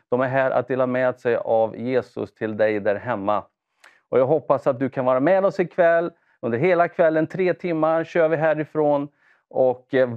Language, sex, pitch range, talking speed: English, male, 115-155 Hz, 195 wpm